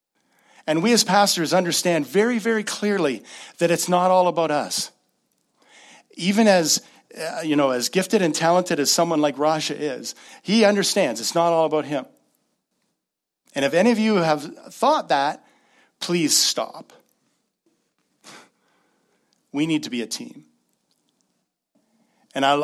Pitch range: 125-185 Hz